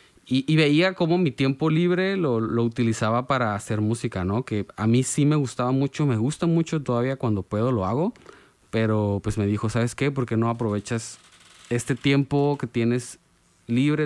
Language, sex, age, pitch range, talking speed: Spanish, male, 20-39, 105-125 Hz, 190 wpm